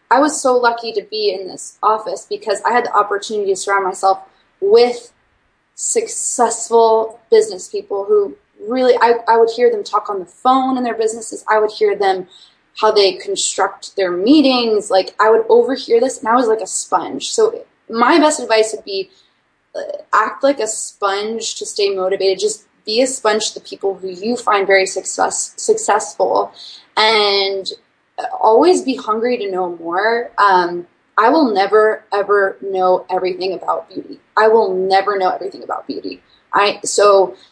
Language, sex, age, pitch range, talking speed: English, female, 20-39, 200-325 Hz, 170 wpm